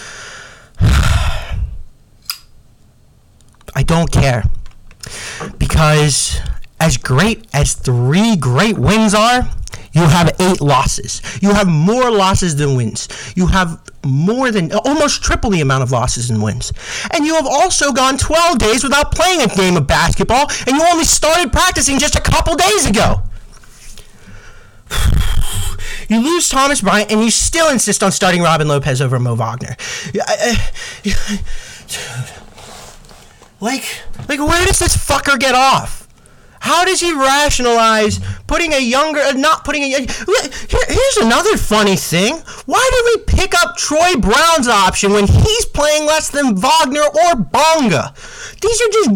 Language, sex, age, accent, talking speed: English, male, 30-49, American, 140 wpm